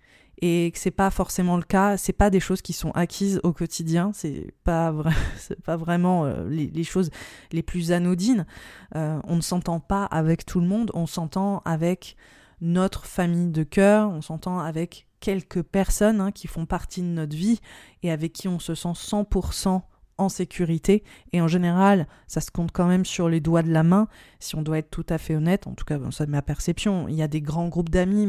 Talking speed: 210 wpm